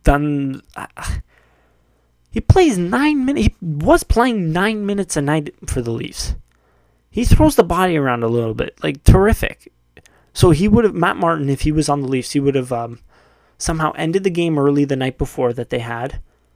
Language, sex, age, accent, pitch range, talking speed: English, male, 20-39, American, 120-160 Hz, 190 wpm